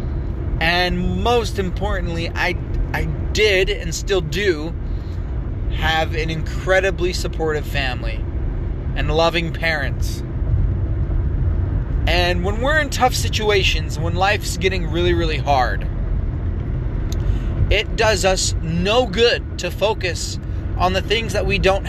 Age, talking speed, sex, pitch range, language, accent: 30-49, 115 wpm, male, 85-110 Hz, English, American